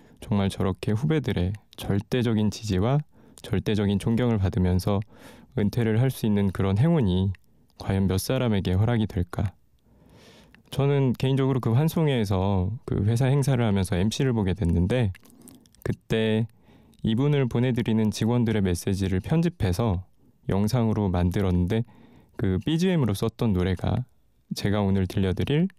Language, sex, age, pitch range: Korean, male, 20-39, 95-120 Hz